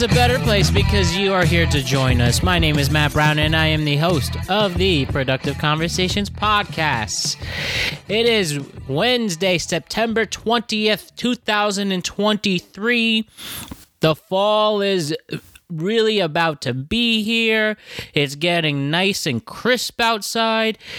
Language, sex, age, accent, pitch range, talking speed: English, male, 20-39, American, 135-195 Hz, 130 wpm